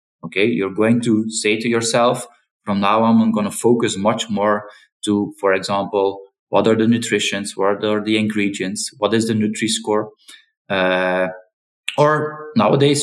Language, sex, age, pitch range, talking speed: French, male, 20-39, 105-130 Hz, 155 wpm